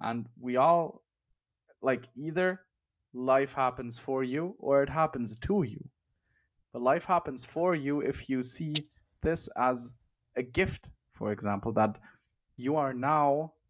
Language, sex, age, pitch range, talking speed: English, male, 20-39, 125-180 Hz, 140 wpm